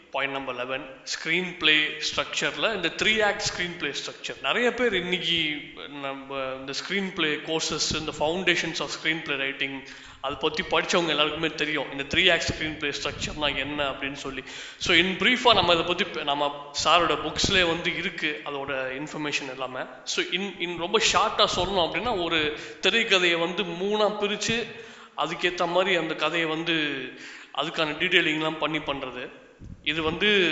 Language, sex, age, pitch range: Thai, male, 20-39, 150-180 Hz